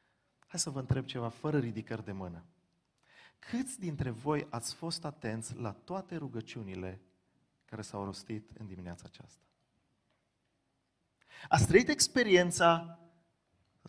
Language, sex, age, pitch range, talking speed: Romanian, male, 30-49, 110-165 Hz, 120 wpm